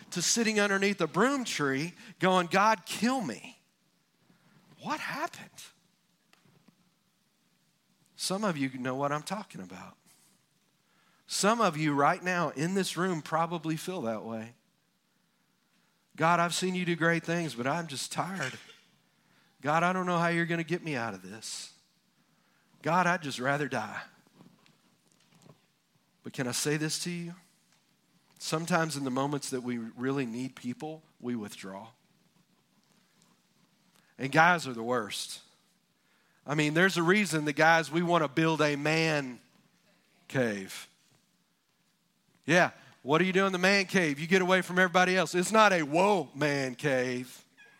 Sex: male